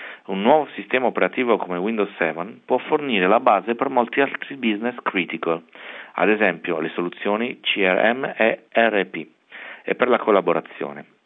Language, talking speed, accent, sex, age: Italian, 145 wpm, native, male, 40-59